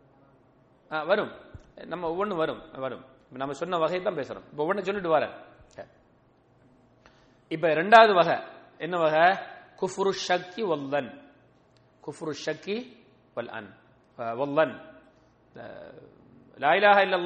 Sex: male